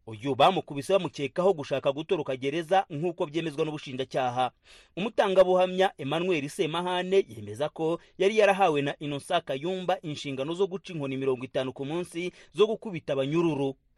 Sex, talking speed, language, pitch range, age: male, 130 wpm, Swahili, 140-190 Hz, 30-49